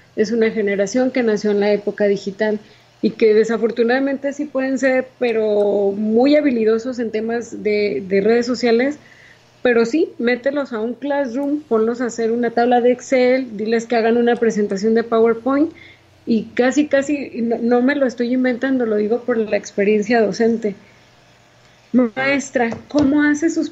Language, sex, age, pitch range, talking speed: Spanish, female, 30-49, 215-255 Hz, 160 wpm